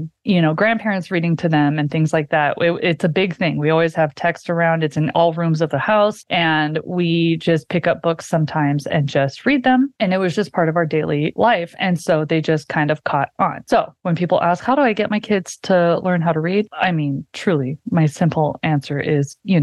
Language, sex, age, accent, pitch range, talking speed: English, female, 30-49, American, 160-190 Hz, 235 wpm